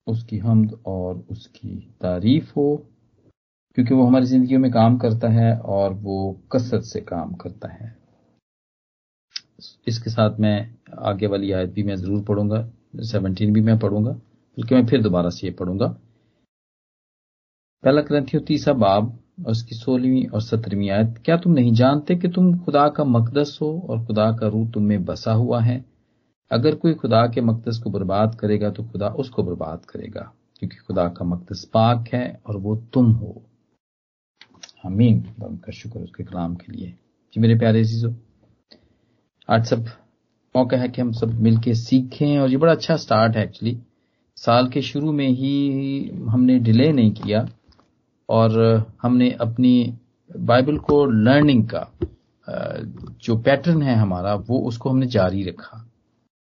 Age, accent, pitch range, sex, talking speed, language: 40-59, native, 105-130 Hz, male, 155 wpm, Hindi